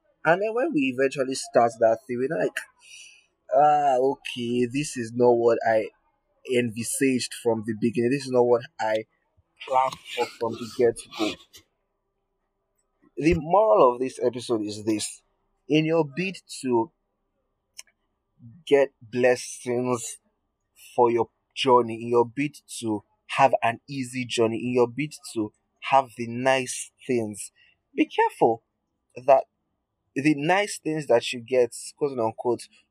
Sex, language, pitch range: male, English, 110-135 Hz